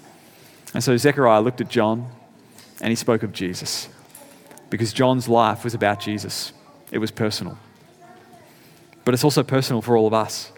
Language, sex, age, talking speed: English, male, 30-49, 160 wpm